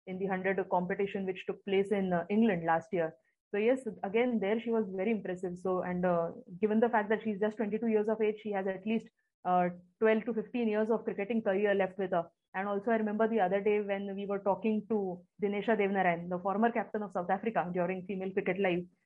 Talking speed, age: 225 wpm, 20-39